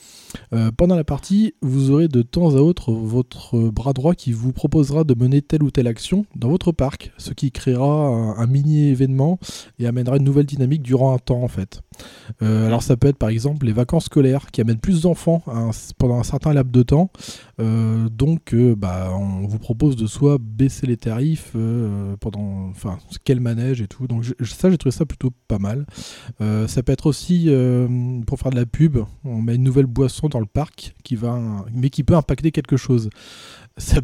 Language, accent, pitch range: French, French, 115-145 Hz